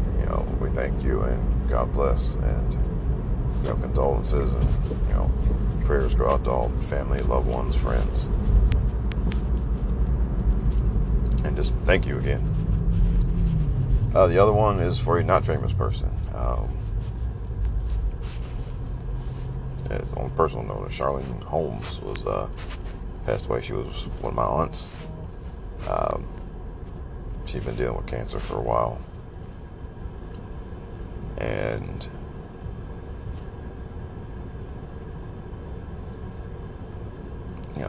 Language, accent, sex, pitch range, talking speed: English, American, male, 70-105 Hz, 105 wpm